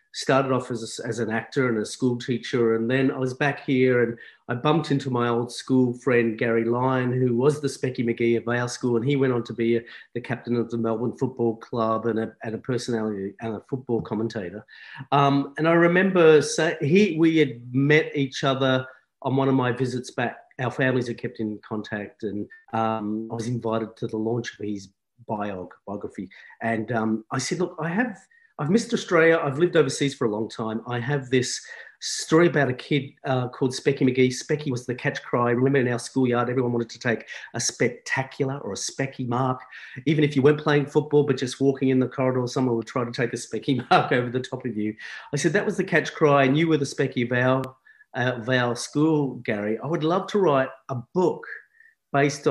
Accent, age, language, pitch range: Australian, 40-59, English, 120-150 Hz